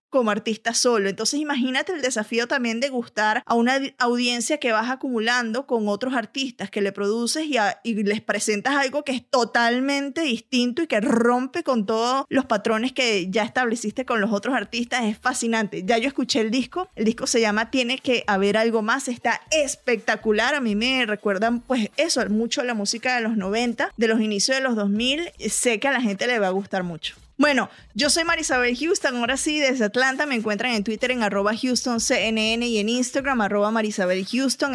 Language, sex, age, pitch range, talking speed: Spanish, female, 20-39, 215-260 Hz, 190 wpm